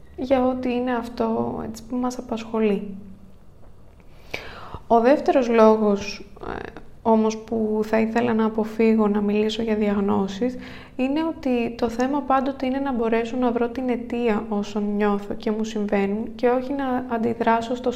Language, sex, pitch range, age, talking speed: Greek, female, 210-255 Hz, 20-39, 145 wpm